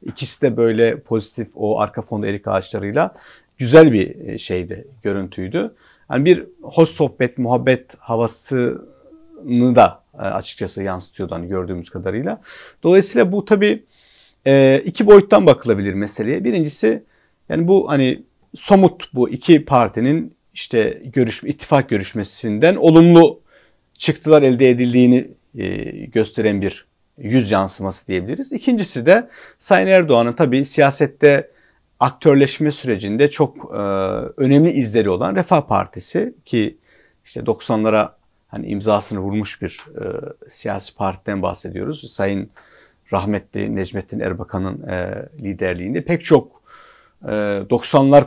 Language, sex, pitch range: Turkish, male, 105-150 Hz